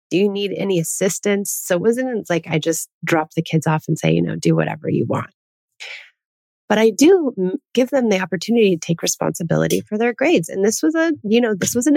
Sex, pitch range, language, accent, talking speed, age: female, 150-195 Hz, English, American, 225 wpm, 30-49